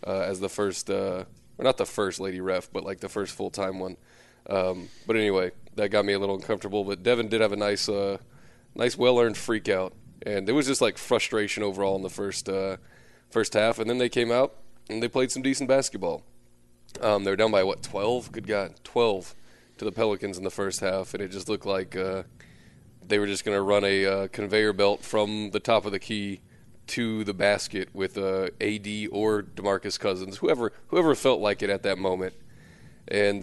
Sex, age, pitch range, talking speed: male, 20-39, 95-110 Hz, 210 wpm